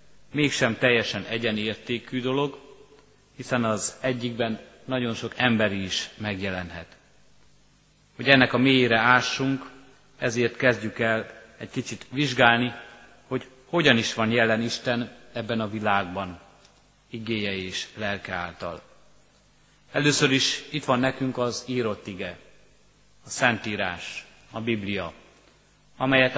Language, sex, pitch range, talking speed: Hungarian, male, 115-130 Hz, 110 wpm